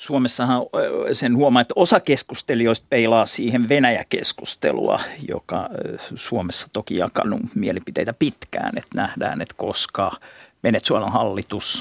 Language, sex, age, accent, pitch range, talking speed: Finnish, male, 50-69, native, 110-130 Hz, 110 wpm